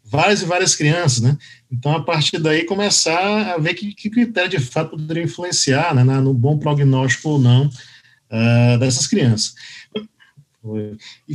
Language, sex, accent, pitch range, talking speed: Portuguese, male, Brazilian, 130-195 Hz, 160 wpm